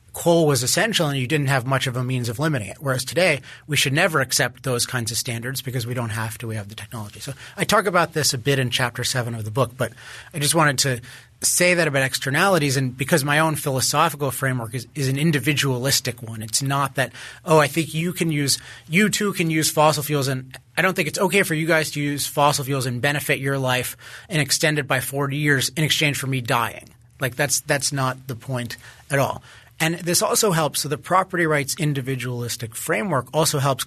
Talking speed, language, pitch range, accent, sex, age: 230 wpm, English, 125-160 Hz, American, male, 30-49